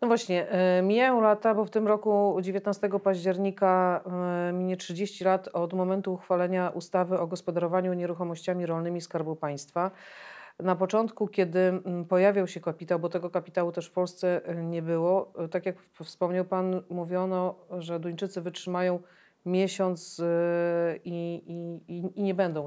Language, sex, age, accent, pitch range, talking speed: Polish, female, 40-59, native, 175-195 Hz, 135 wpm